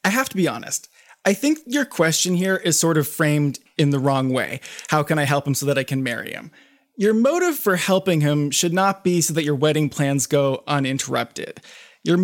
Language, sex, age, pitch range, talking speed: English, male, 20-39, 145-195 Hz, 220 wpm